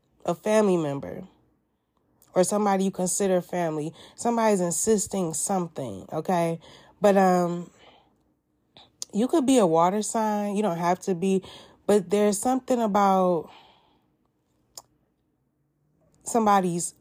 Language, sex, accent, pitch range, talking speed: English, female, American, 170-205 Hz, 105 wpm